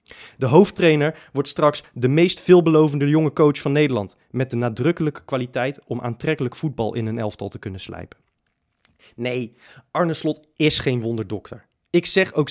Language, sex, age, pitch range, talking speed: Dutch, male, 20-39, 115-150 Hz, 155 wpm